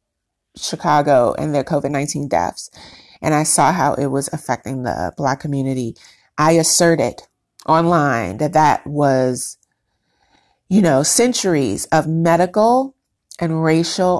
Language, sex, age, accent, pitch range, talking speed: English, female, 30-49, American, 145-180 Hz, 120 wpm